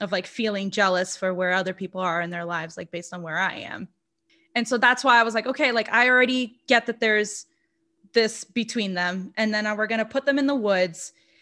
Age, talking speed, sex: 20-39, 235 wpm, female